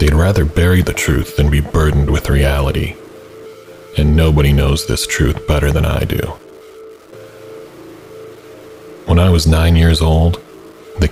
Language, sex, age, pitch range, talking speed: English, male, 30-49, 75-110 Hz, 140 wpm